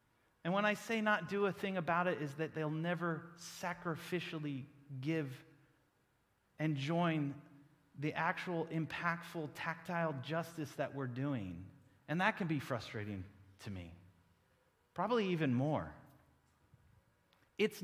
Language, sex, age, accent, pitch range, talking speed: English, male, 30-49, American, 135-180 Hz, 125 wpm